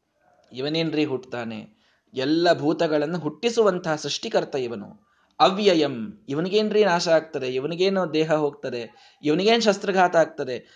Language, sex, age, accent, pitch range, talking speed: Kannada, male, 20-39, native, 140-200 Hz, 95 wpm